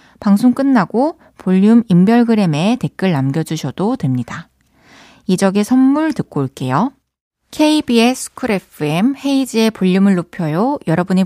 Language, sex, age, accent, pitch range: Korean, female, 20-39, native, 185-265 Hz